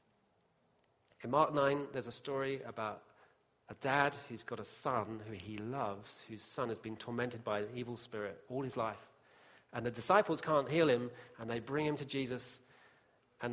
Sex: male